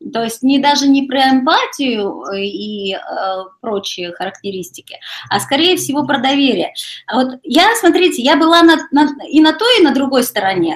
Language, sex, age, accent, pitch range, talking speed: Russian, female, 20-39, native, 225-300 Hz, 175 wpm